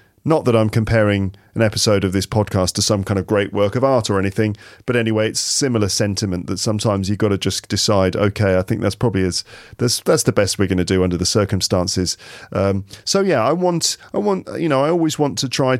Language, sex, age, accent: English, male, 40-59, British